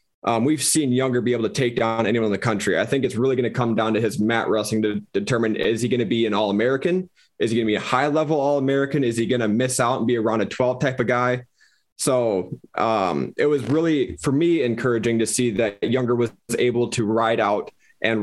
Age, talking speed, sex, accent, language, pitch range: 20-39, 245 wpm, male, American, English, 110-125 Hz